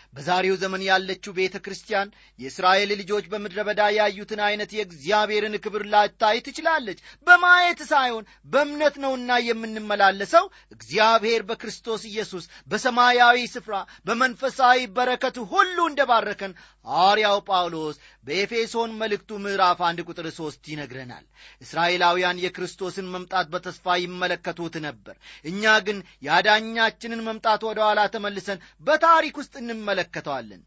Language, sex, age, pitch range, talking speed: Amharic, male, 30-49, 170-225 Hz, 100 wpm